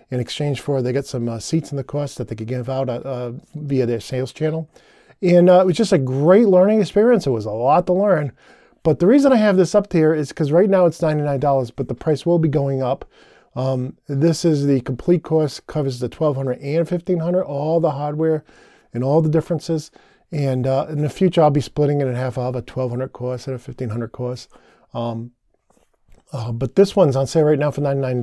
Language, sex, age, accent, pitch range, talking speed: English, male, 40-59, American, 130-170 Hz, 230 wpm